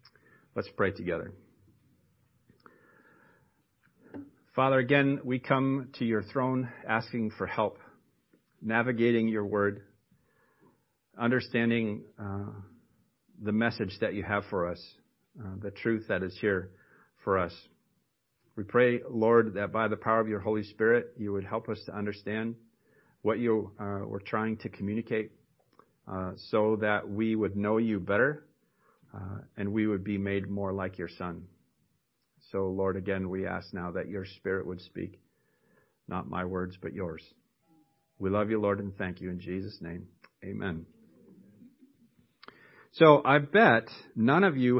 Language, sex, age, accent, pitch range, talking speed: English, male, 50-69, American, 100-130 Hz, 145 wpm